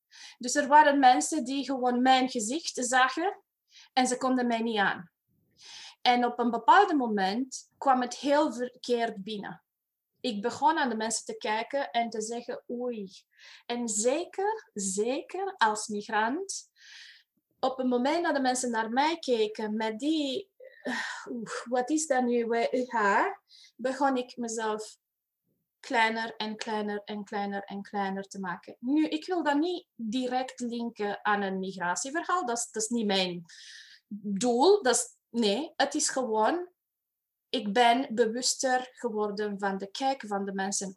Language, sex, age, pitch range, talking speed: Dutch, female, 20-39, 215-270 Hz, 150 wpm